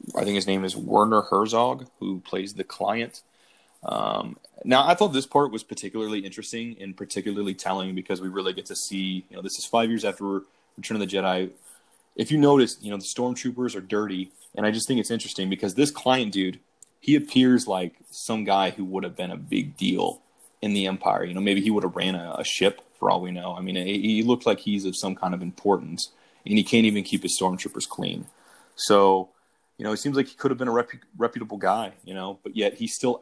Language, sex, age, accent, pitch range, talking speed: English, male, 20-39, American, 95-115 Hz, 230 wpm